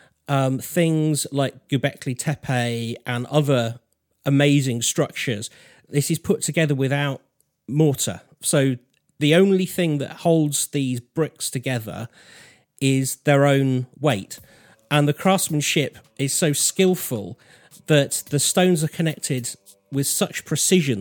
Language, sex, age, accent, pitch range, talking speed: English, male, 40-59, British, 120-160 Hz, 120 wpm